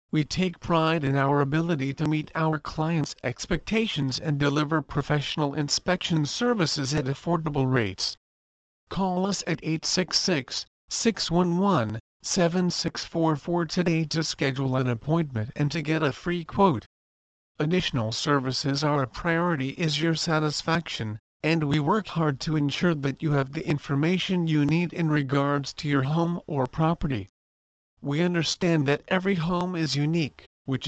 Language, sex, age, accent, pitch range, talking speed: English, male, 50-69, American, 135-170 Hz, 135 wpm